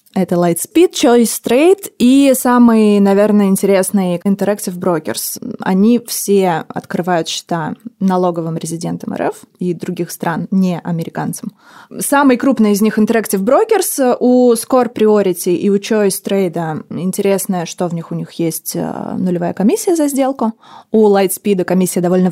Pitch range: 175-230 Hz